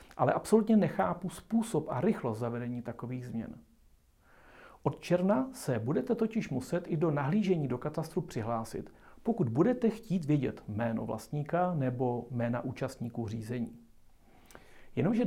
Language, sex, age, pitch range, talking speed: Czech, male, 40-59, 125-175 Hz, 125 wpm